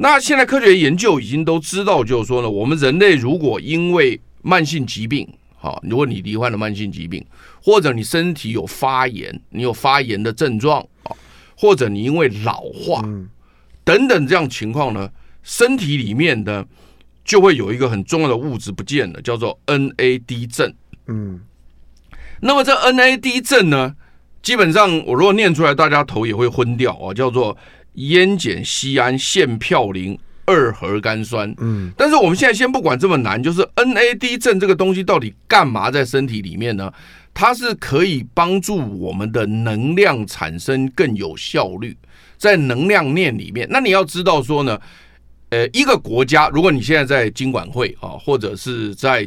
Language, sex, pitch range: Chinese, male, 110-165 Hz